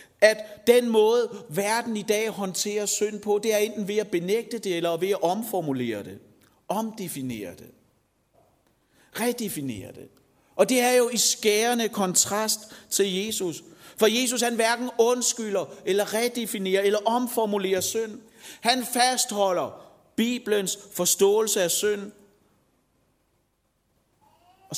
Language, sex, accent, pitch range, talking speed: Danish, male, native, 195-235 Hz, 125 wpm